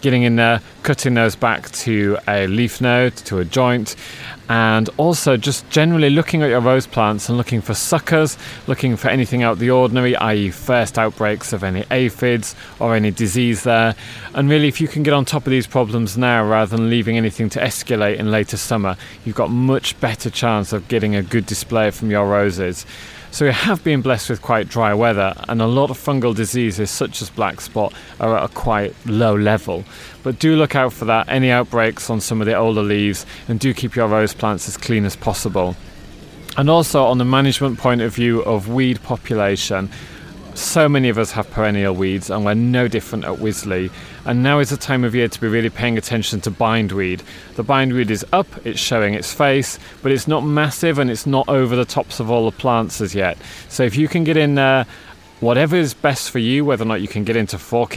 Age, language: 30-49, English